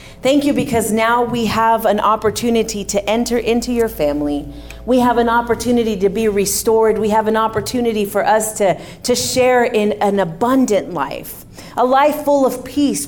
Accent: American